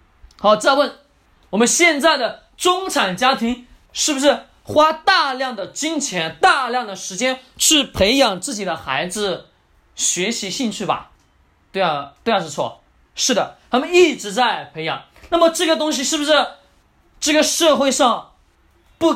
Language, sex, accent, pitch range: Chinese, male, native, 175-280 Hz